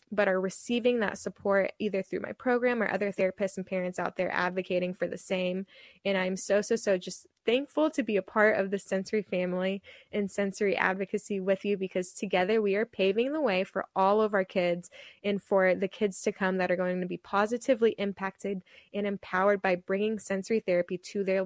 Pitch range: 185-215 Hz